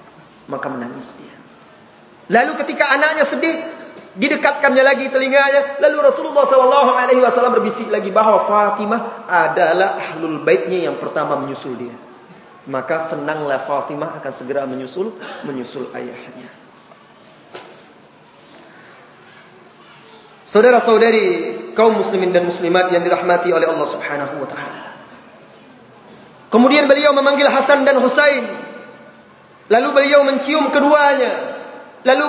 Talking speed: 100 wpm